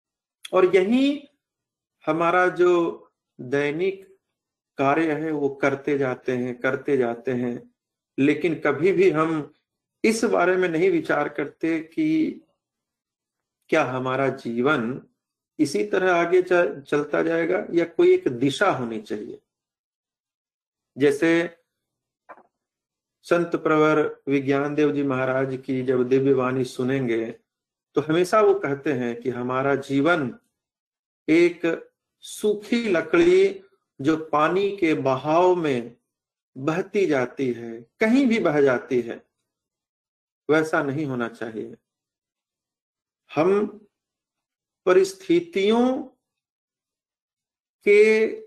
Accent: native